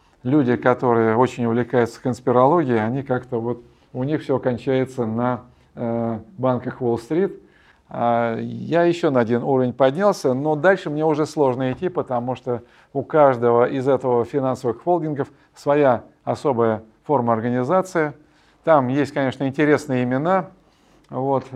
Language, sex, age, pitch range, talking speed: Russian, male, 50-69, 120-145 Hz, 130 wpm